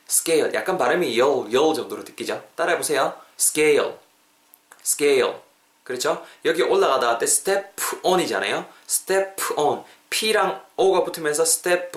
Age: 20-39